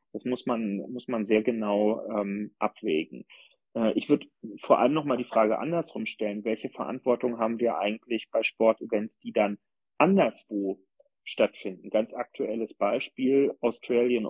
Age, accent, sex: 40-59, German, male